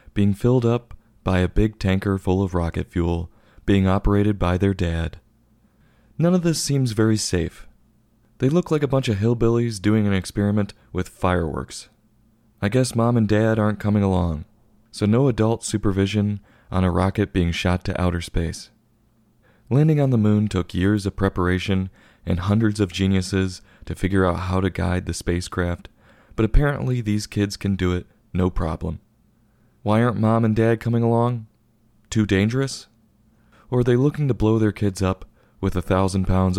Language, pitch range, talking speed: English, 95-110 Hz, 170 wpm